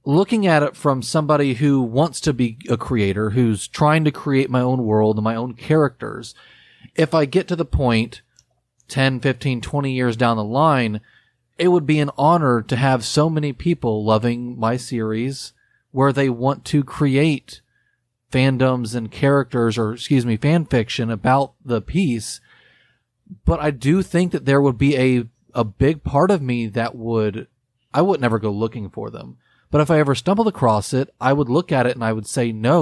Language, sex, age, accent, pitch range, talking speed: English, male, 30-49, American, 115-145 Hz, 190 wpm